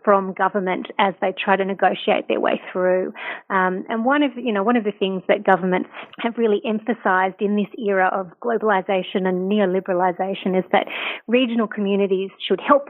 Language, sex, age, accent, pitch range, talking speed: English, female, 30-49, Australian, 185-220 Hz, 175 wpm